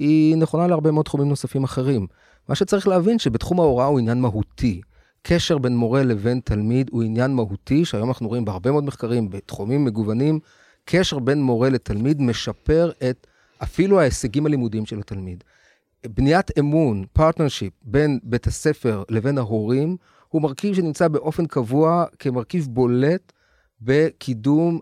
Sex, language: male, Hebrew